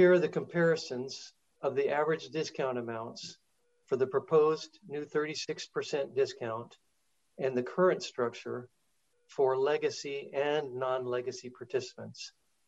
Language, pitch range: English, 120-155 Hz